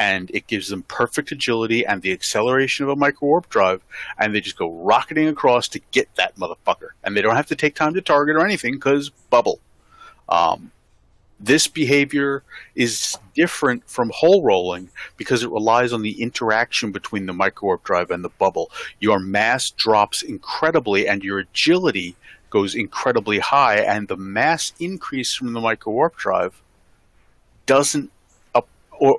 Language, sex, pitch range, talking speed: English, male, 105-145 Hz, 160 wpm